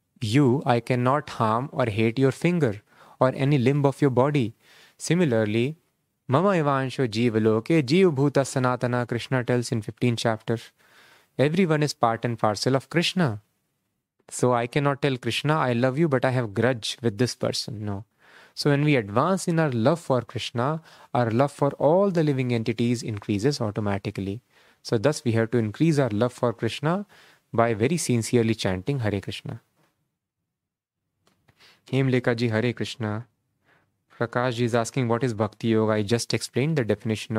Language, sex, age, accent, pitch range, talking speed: English, male, 20-39, Indian, 115-145 Hz, 155 wpm